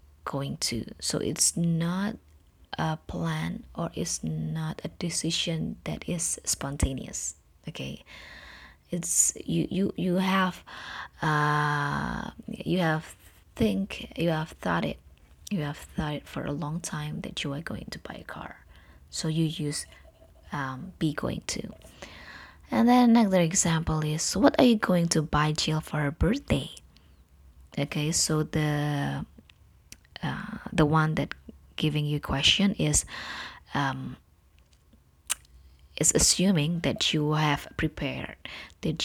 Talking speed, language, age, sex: 135 wpm, English, 20-39, female